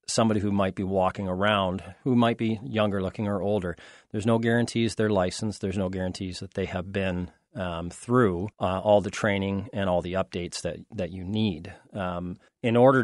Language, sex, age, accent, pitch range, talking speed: English, male, 40-59, American, 90-105 Hz, 195 wpm